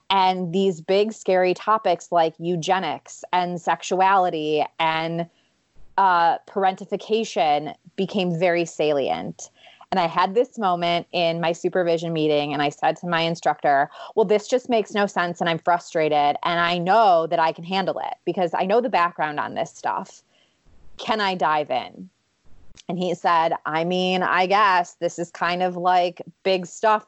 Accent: American